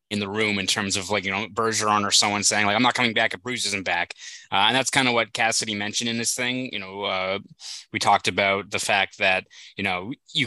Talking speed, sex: 260 wpm, male